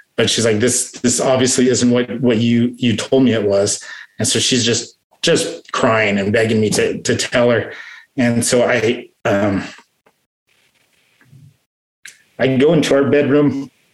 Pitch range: 115-130 Hz